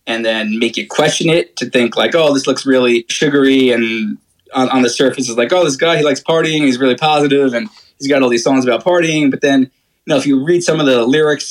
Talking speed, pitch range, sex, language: 255 wpm, 120-145 Hz, male, English